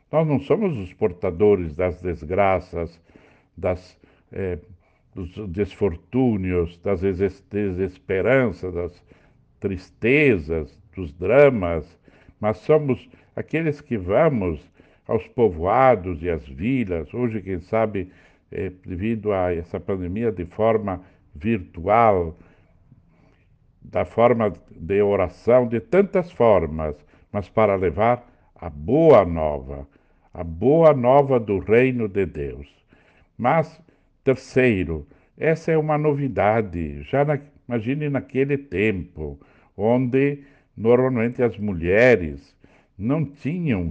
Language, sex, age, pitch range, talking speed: Portuguese, male, 60-79, 90-125 Hz, 100 wpm